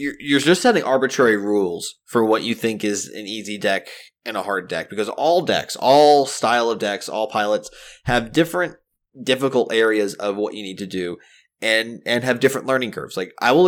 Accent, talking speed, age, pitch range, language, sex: American, 200 wpm, 20-39, 110-130 Hz, English, male